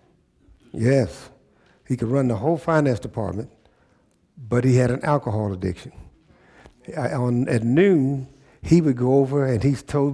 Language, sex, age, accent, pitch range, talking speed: English, male, 60-79, American, 120-140 Hz, 150 wpm